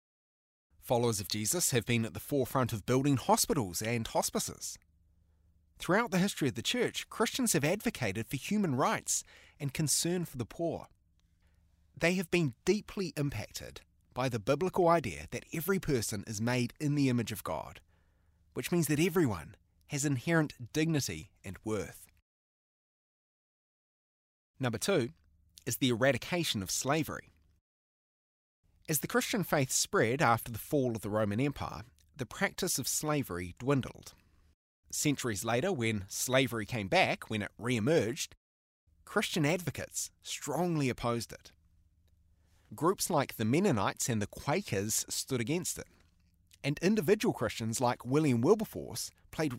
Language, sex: English, male